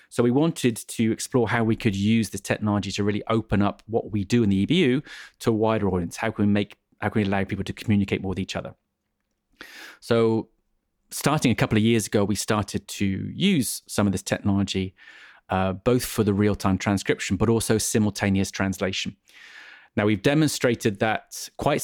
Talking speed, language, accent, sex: 185 wpm, English, British, male